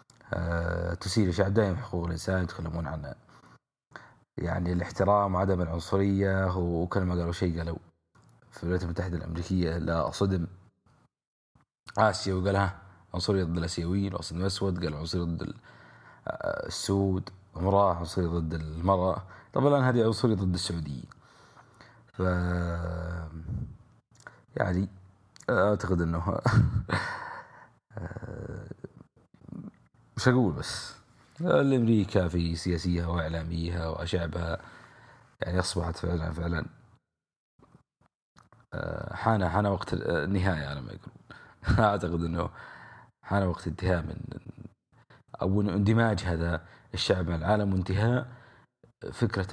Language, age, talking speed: English, 30-49, 90 wpm